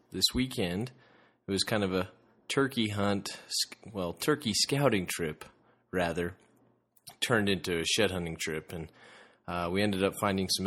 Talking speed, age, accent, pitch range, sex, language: 150 wpm, 20-39, American, 90-115 Hz, male, English